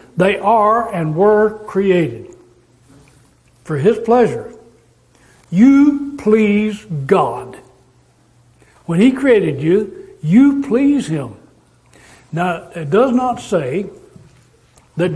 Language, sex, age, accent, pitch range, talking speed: English, male, 60-79, American, 160-220 Hz, 95 wpm